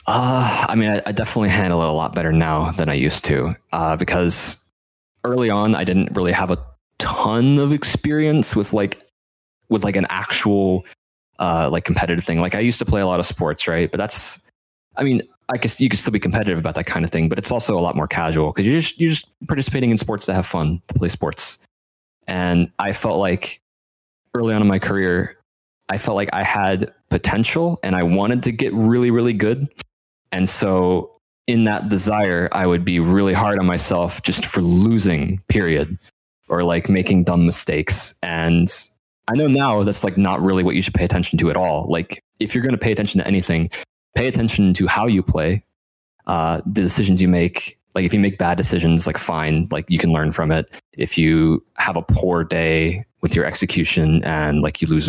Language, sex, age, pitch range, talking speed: English, male, 20-39, 85-110 Hz, 210 wpm